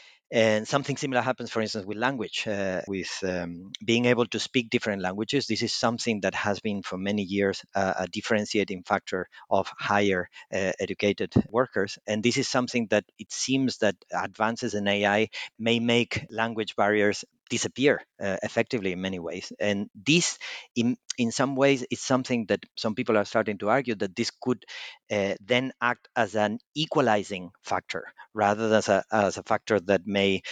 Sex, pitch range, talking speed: male, 100-120 Hz, 175 wpm